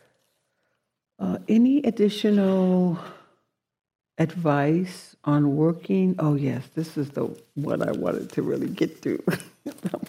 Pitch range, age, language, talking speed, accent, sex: 150-210 Hz, 60-79, English, 115 wpm, American, female